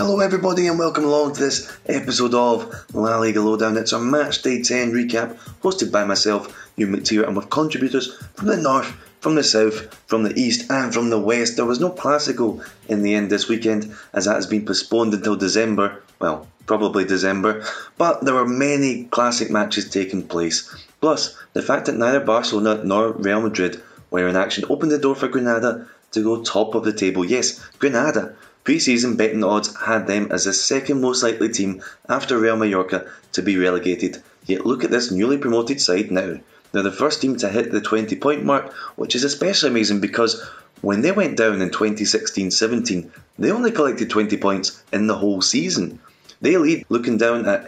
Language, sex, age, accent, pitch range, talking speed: English, male, 20-39, British, 100-125 Hz, 190 wpm